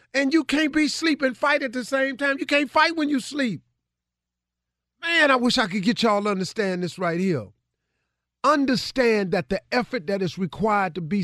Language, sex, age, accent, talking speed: English, male, 50-69, American, 205 wpm